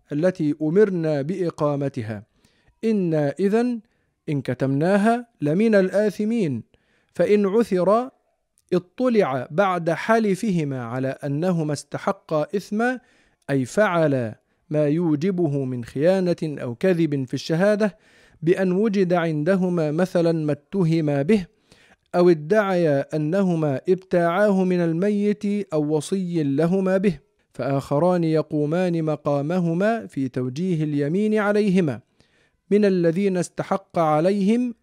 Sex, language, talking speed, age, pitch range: male, Arabic, 95 wpm, 50-69, 150-200 Hz